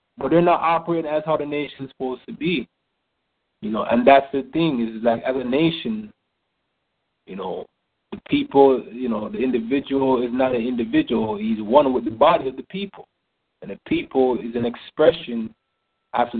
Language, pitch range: English, 120-155 Hz